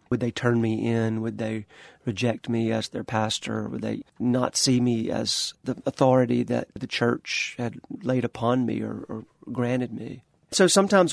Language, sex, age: English, male, 40-59